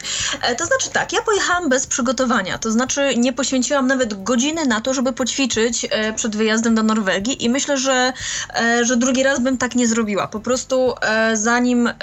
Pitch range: 215-260 Hz